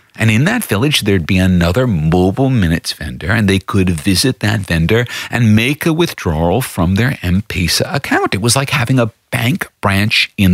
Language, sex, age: English, male, 50-69